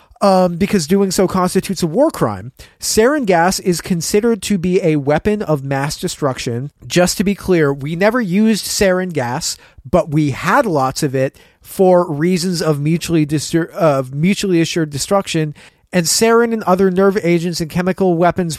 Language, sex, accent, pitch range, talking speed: English, male, American, 145-180 Hz, 160 wpm